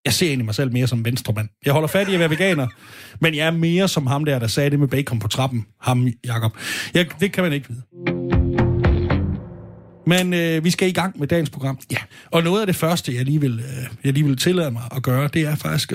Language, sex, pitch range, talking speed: Danish, male, 130-170 Hz, 240 wpm